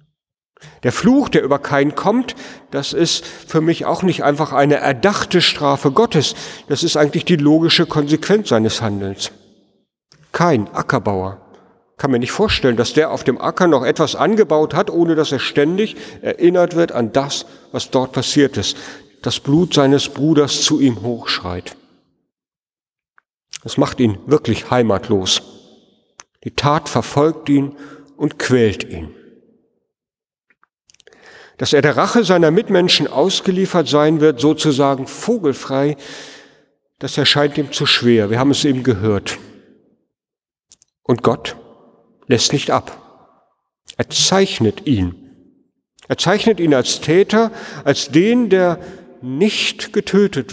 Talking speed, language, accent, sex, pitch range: 130 wpm, German, German, male, 125-170 Hz